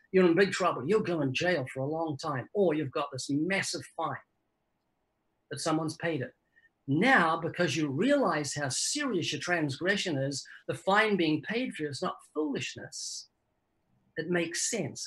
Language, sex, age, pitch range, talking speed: English, male, 50-69, 145-185 Hz, 165 wpm